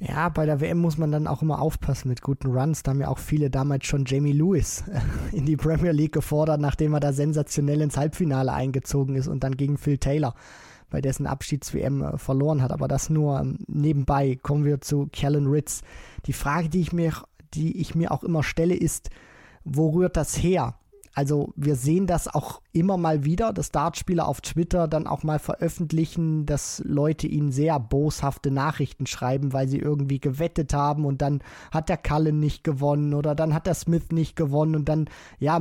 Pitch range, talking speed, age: 140-160 Hz, 195 wpm, 20-39